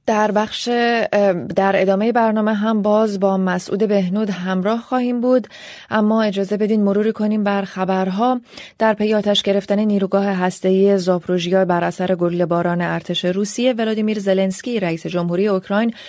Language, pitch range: Persian, 185-220 Hz